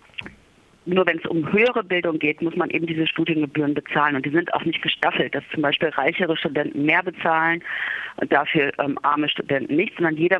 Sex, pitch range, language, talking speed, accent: female, 145-165 Hz, German, 195 wpm, German